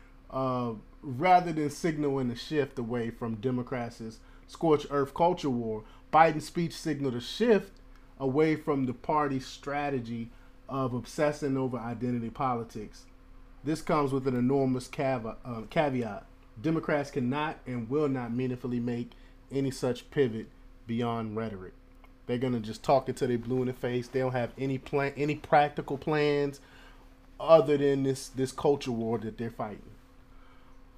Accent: American